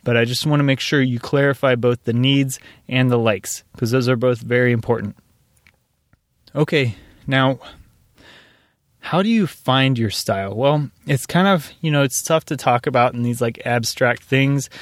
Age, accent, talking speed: 20-39, American, 180 wpm